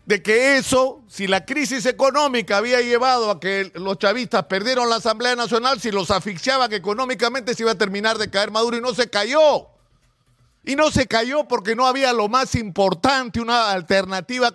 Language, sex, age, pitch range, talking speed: Spanish, male, 50-69, 205-270 Hz, 180 wpm